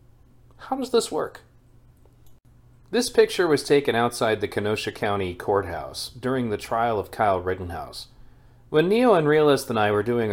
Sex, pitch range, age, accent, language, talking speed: male, 115-135 Hz, 40-59, American, English, 155 wpm